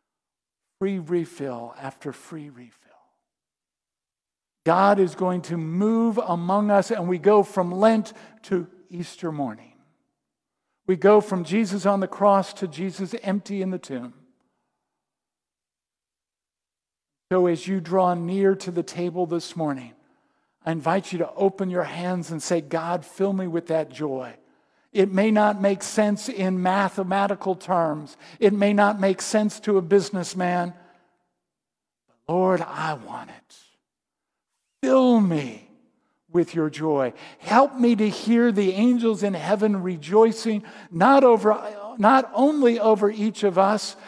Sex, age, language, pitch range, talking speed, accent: male, 50-69, English, 170-210 Hz, 135 wpm, American